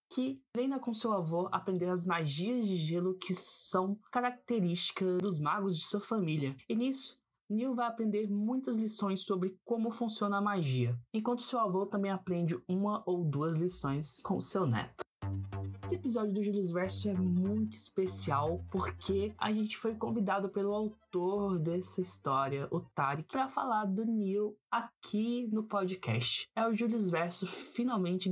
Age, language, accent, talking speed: 20-39, Portuguese, Brazilian, 155 wpm